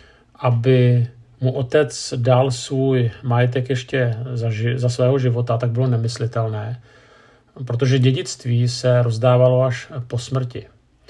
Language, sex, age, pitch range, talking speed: Czech, male, 50-69, 115-130 Hz, 120 wpm